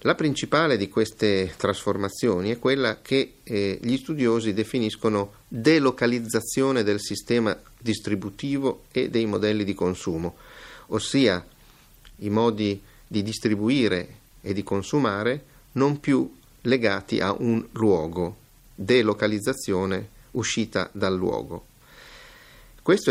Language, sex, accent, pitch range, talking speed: Italian, male, native, 100-125 Hz, 105 wpm